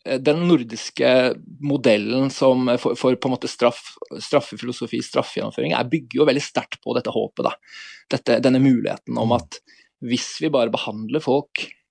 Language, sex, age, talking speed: Danish, male, 20-39, 150 wpm